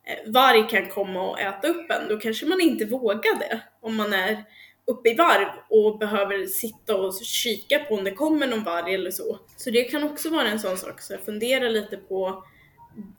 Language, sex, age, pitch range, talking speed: Swedish, female, 10-29, 195-255 Hz, 205 wpm